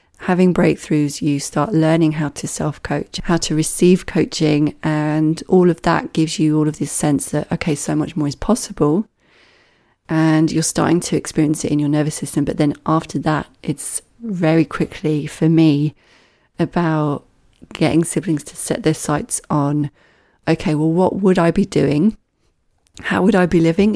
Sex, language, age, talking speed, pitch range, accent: female, English, 30-49, 170 wpm, 155-180 Hz, British